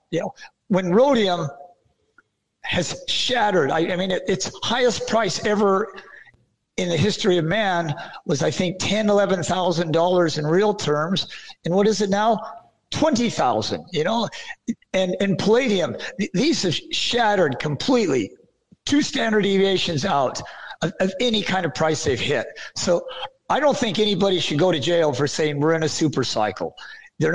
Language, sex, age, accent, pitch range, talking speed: English, male, 50-69, American, 155-200 Hz, 160 wpm